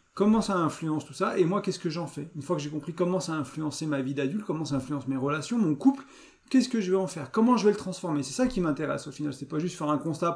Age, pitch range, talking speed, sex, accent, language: 40-59, 140-190 Hz, 315 wpm, male, French, French